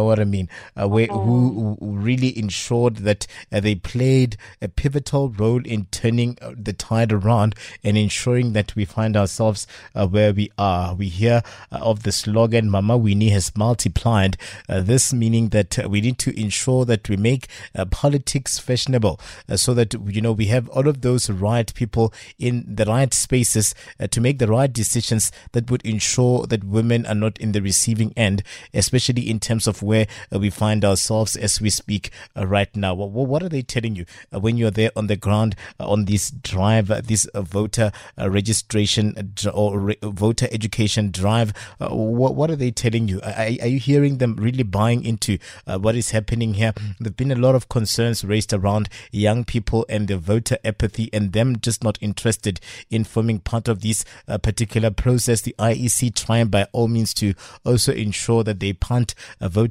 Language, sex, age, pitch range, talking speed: English, male, 20-39, 105-120 Hz, 180 wpm